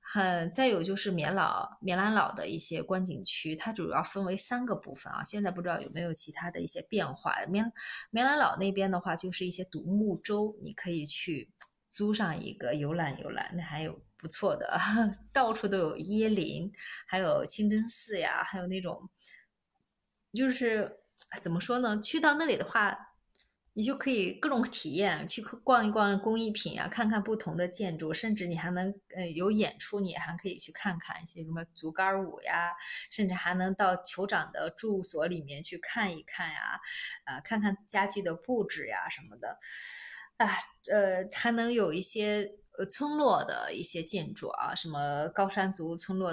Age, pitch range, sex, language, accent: 20-39, 175-215 Hz, female, Chinese, native